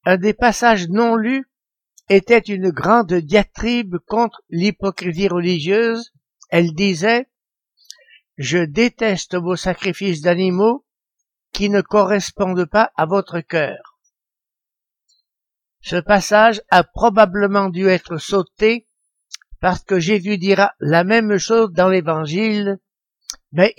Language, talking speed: French, 110 wpm